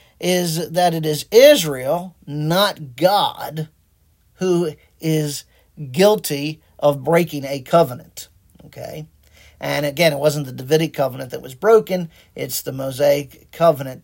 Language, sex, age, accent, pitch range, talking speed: English, male, 50-69, American, 145-220 Hz, 125 wpm